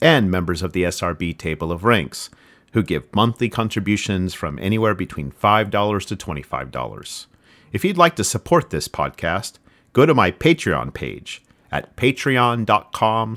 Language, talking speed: English, 145 wpm